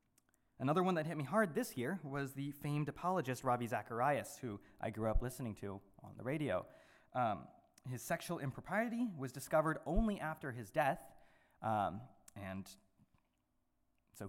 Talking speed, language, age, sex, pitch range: 150 wpm, English, 20-39, male, 125-180 Hz